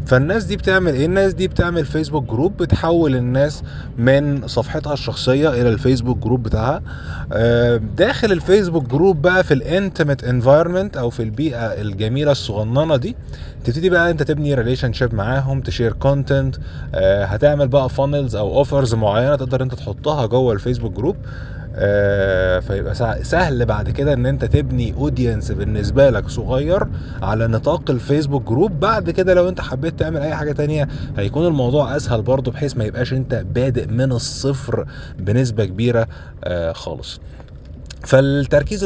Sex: male